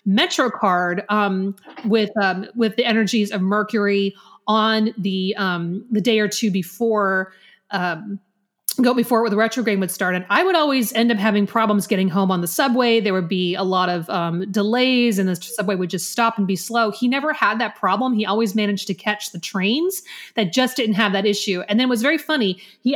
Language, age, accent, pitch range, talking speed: English, 30-49, American, 195-245 Hz, 210 wpm